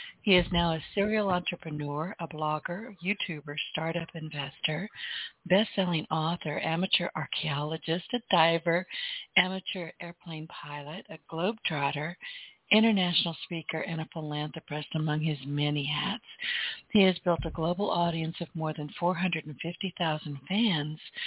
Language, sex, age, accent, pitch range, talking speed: English, female, 60-79, American, 155-200 Hz, 120 wpm